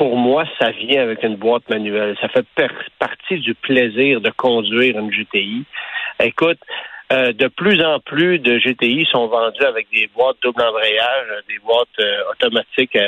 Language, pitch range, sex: French, 115-165 Hz, male